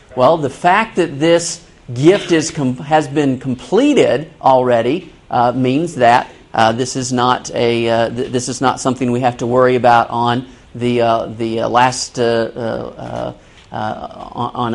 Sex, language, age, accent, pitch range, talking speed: male, English, 40-59, American, 115-140 Hz, 170 wpm